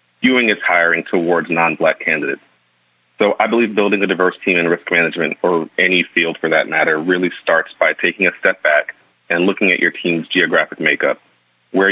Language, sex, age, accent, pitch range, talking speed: English, male, 30-49, American, 80-100 Hz, 185 wpm